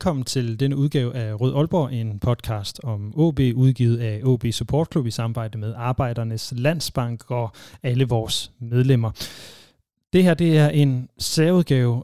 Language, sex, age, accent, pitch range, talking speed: Danish, male, 30-49, native, 115-145 Hz, 155 wpm